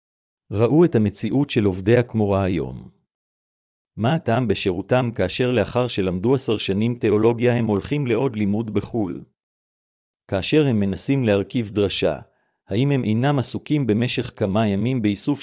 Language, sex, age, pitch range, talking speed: Hebrew, male, 50-69, 100-125 Hz, 130 wpm